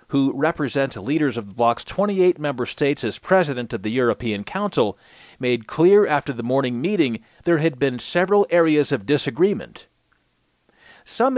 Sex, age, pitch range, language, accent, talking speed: male, 40-59, 115-155 Hz, English, American, 155 wpm